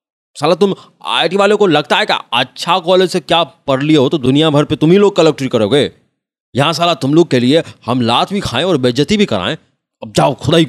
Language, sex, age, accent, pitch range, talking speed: Hindi, male, 30-49, native, 95-135 Hz, 230 wpm